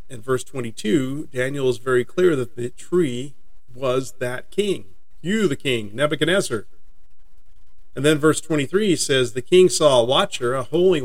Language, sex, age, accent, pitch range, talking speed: English, male, 40-59, American, 115-145 Hz, 155 wpm